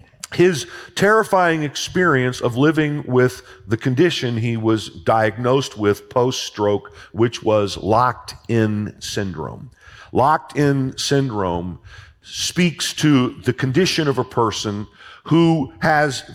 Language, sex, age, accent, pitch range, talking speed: English, male, 50-69, American, 110-160 Hz, 105 wpm